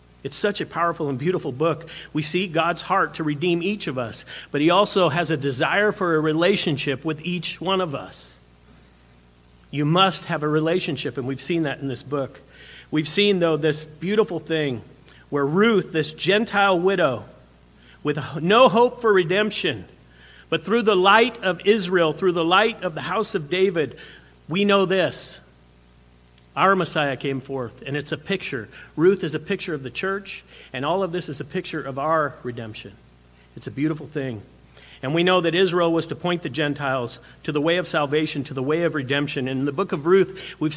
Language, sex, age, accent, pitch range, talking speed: English, male, 50-69, American, 140-190 Hz, 190 wpm